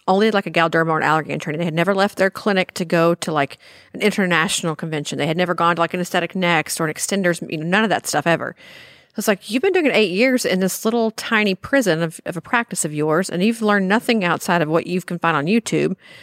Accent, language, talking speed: American, English, 260 wpm